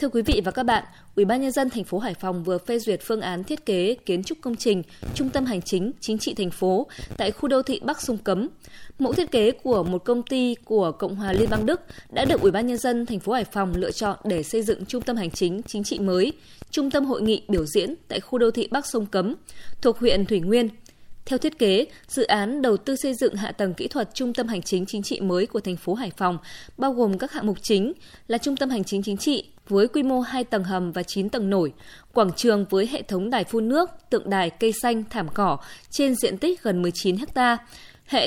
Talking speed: 250 wpm